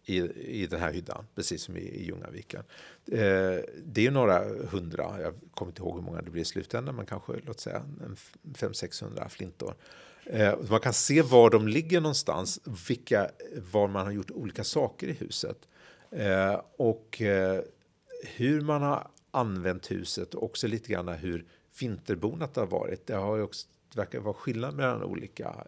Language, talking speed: Swedish, 175 wpm